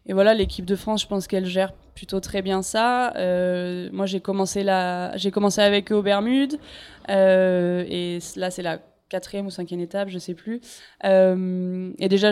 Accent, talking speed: French, 195 wpm